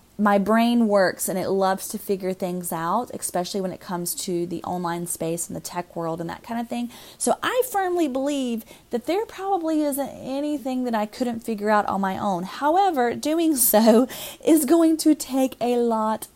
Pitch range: 185-240 Hz